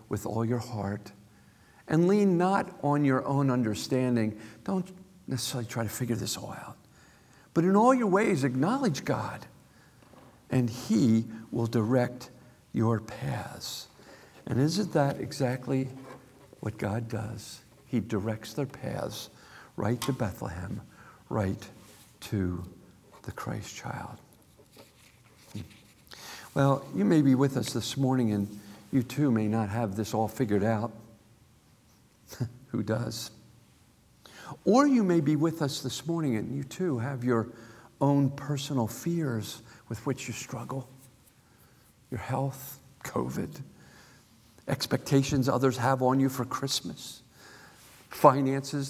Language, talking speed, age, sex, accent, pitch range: English, 125 wpm, 50-69, male, American, 115-140 Hz